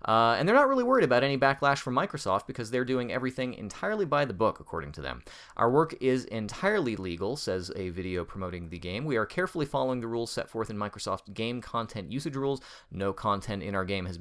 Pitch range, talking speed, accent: 95-130 Hz, 225 wpm, American